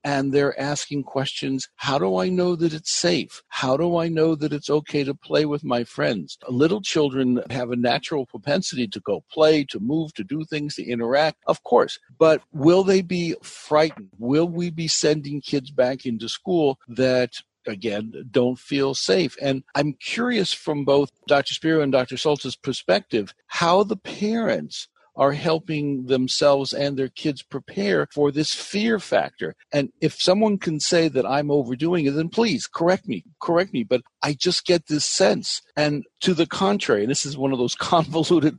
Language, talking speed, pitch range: English, 180 wpm, 135-175 Hz